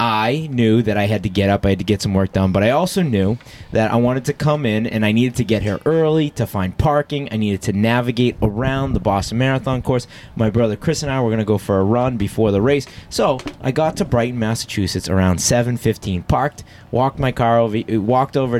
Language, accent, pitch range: English, American, 110-145 Hz